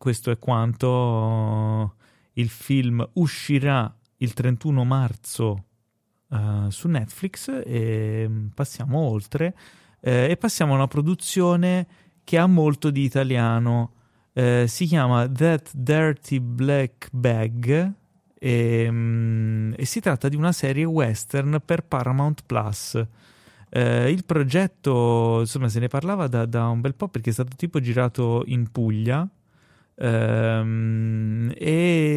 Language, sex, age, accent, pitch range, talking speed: Italian, male, 30-49, native, 115-150 Hz, 120 wpm